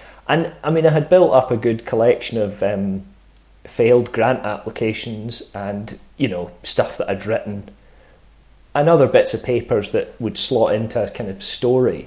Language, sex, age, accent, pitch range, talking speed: English, male, 30-49, British, 105-125 Hz, 175 wpm